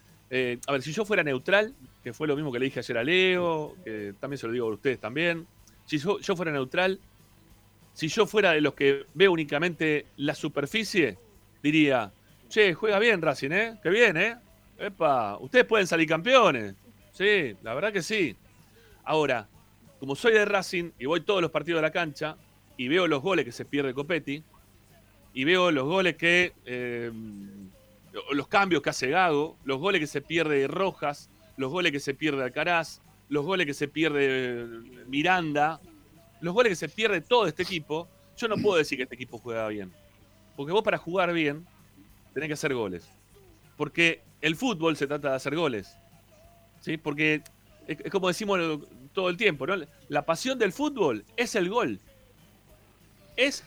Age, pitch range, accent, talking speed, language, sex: 30-49, 120-180 Hz, Argentinian, 180 wpm, Spanish, male